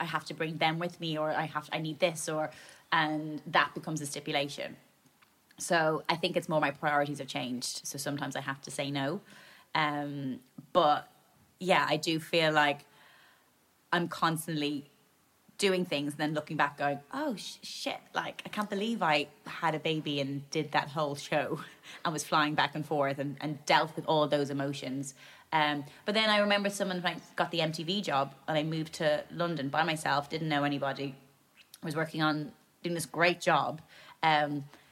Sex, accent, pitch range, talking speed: female, British, 145-175 Hz, 185 wpm